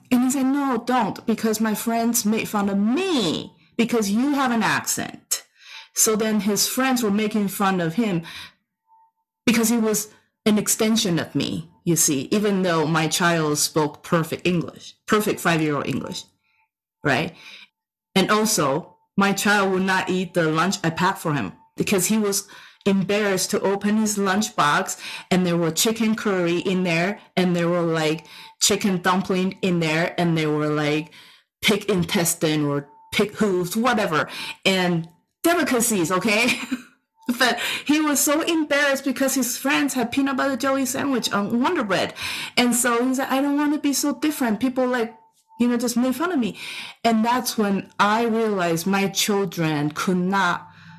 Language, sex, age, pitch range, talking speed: English, female, 30-49, 175-245 Hz, 170 wpm